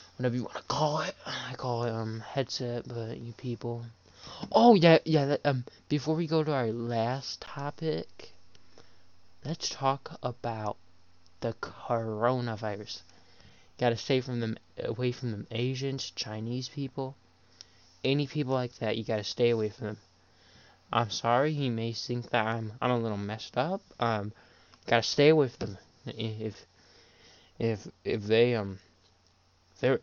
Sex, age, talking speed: male, 20-39, 150 wpm